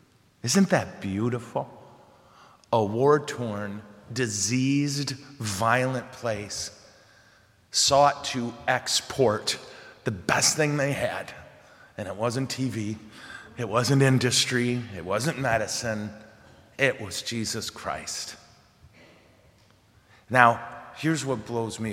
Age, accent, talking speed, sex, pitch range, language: 30-49, American, 95 wpm, male, 110-135 Hz, English